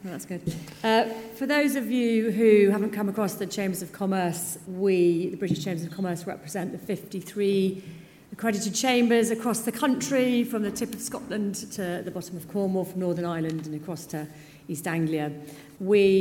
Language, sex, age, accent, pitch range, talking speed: English, female, 40-59, British, 170-205 Hz, 180 wpm